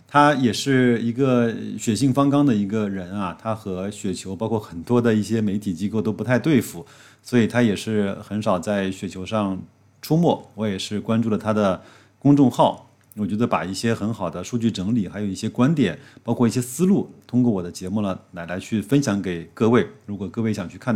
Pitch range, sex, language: 95-120 Hz, male, Chinese